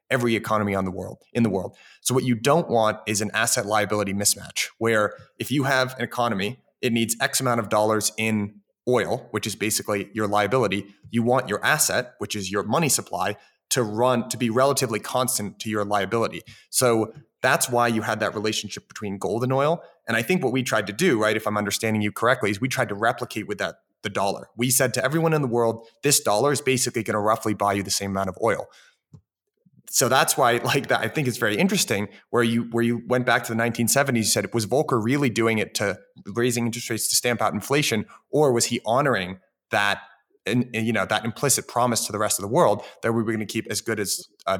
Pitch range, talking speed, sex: 105-125 Hz, 230 wpm, male